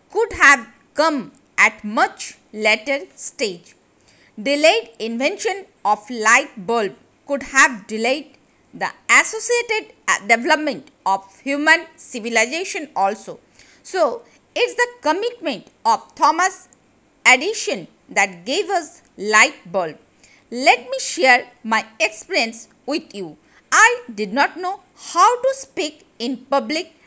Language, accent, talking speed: Hindi, native, 110 wpm